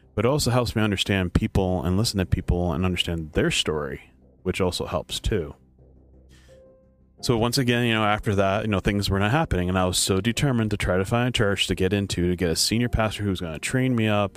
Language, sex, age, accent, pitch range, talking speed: English, male, 30-49, American, 85-105 Hz, 240 wpm